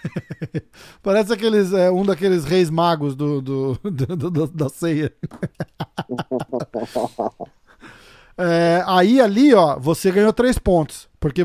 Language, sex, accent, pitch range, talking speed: Portuguese, male, Brazilian, 150-200 Hz, 120 wpm